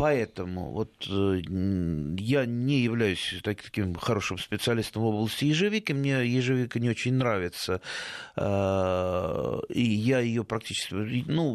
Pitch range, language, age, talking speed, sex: 105-130 Hz, Russian, 30-49, 110 wpm, male